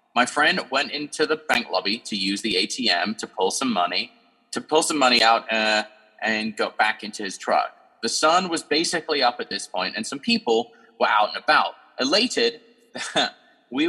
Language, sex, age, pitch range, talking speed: English, male, 30-49, 120-180 Hz, 190 wpm